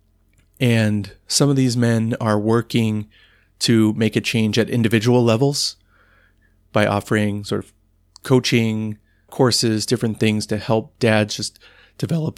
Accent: American